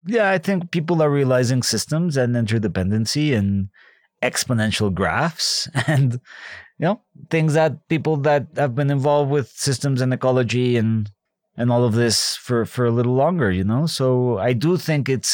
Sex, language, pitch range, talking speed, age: male, English, 110-150 Hz, 170 wpm, 30-49